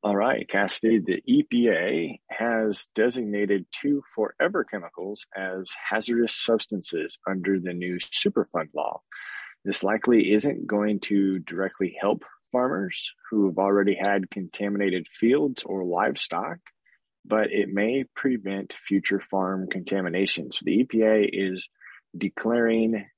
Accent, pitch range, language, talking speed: American, 95-115 Hz, English, 120 wpm